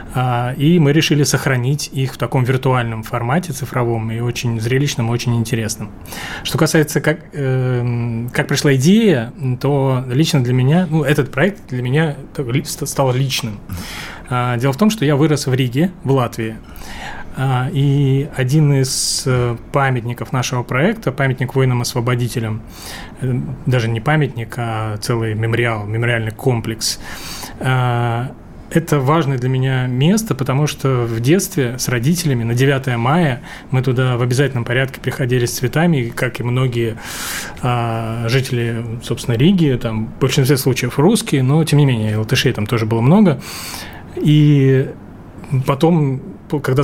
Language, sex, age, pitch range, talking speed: Russian, male, 20-39, 120-145 Hz, 135 wpm